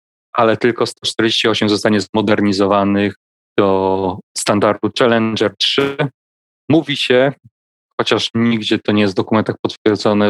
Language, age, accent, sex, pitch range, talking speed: Polish, 30-49, native, male, 105-125 Hz, 110 wpm